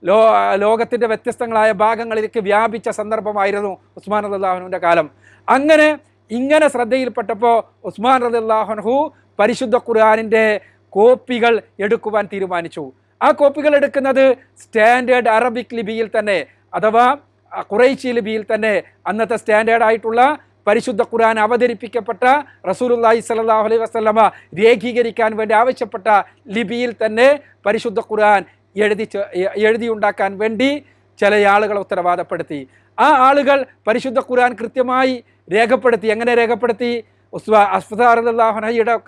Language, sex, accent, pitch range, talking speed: Malayalam, male, native, 215-245 Hz, 100 wpm